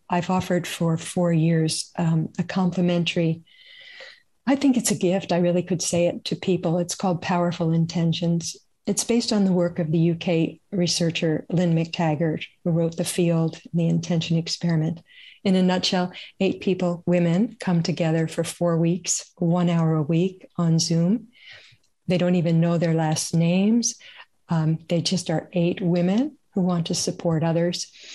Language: English